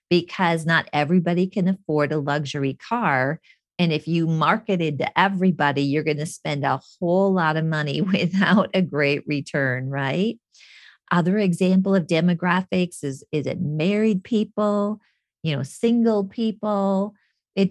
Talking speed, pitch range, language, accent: 145 wpm, 150-190 Hz, English, American